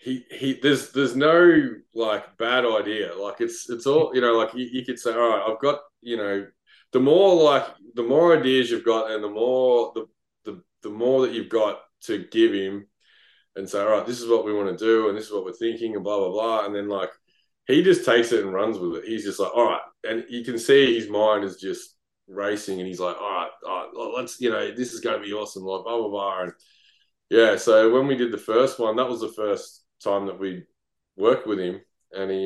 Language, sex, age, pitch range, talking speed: English, male, 20-39, 95-125 Hz, 245 wpm